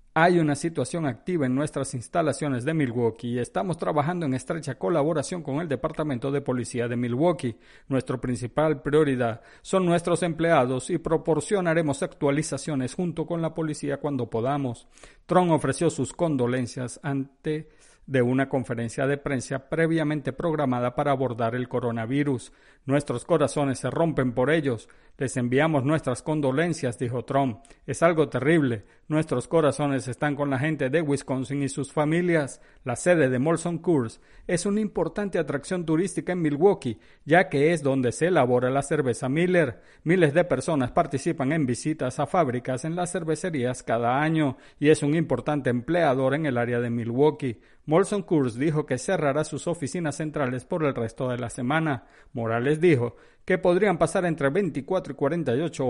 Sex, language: male, Spanish